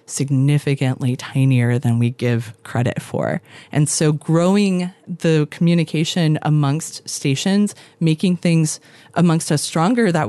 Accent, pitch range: American, 140-160 Hz